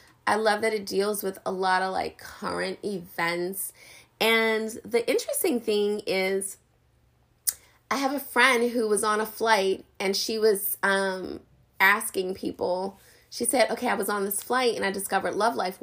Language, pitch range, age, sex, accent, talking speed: English, 195-245 Hz, 20-39, female, American, 170 wpm